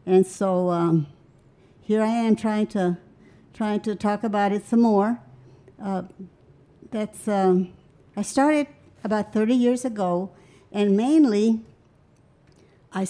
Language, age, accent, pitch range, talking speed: English, 60-79, American, 185-220 Hz, 125 wpm